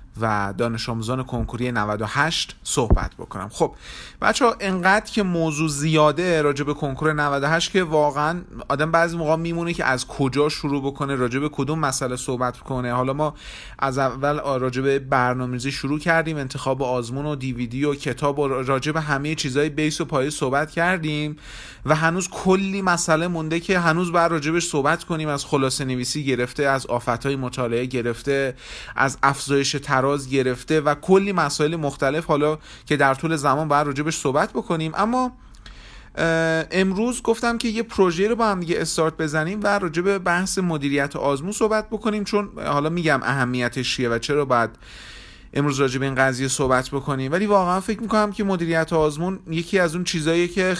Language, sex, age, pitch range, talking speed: Persian, male, 30-49, 135-170 Hz, 160 wpm